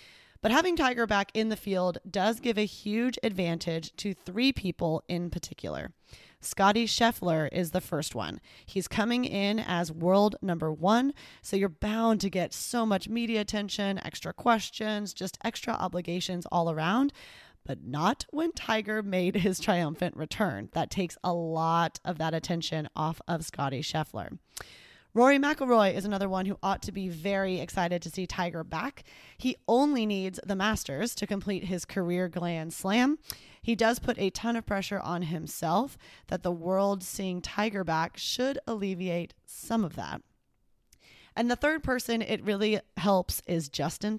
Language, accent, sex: English, American, female